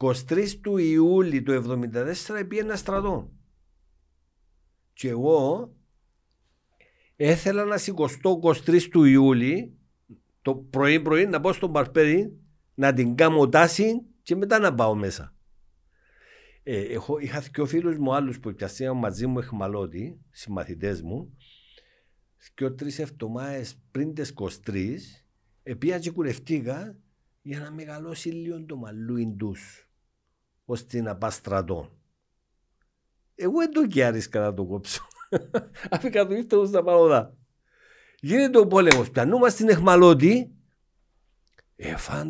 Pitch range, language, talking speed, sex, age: 110-165 Hz, Greek, 120 wpm, male, 60-79